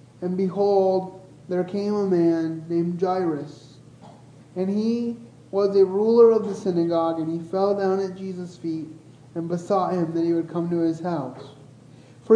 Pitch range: 155-195 Hz